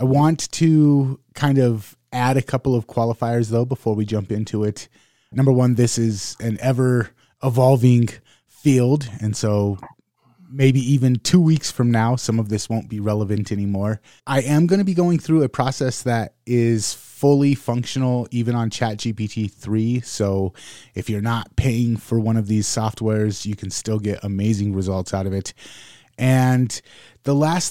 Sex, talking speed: male, 165 wpm